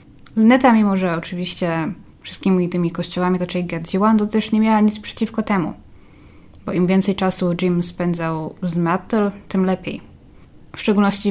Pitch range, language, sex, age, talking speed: 175-205 Hz, Polish, female, 20-39, 155 wpm